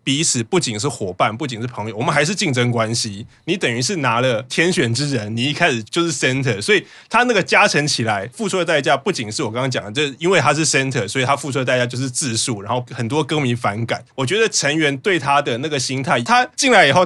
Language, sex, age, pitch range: Chinese, male, 20-39, 120-160 Hz